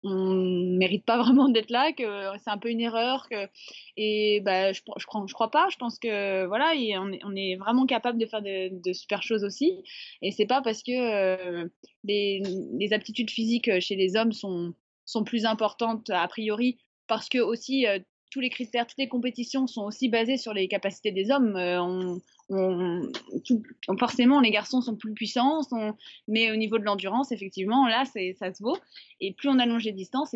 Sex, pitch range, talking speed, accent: female, 195-245 Hz, 210 wpm, French